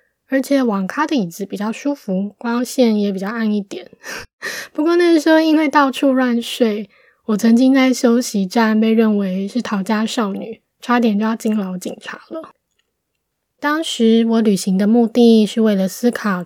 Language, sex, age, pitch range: Chinese, female, 20-39, 205-250 Hz